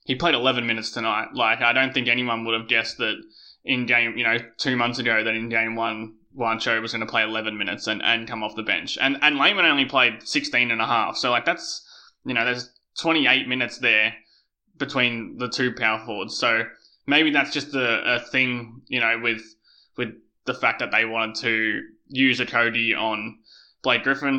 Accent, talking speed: Australian, 205 wpm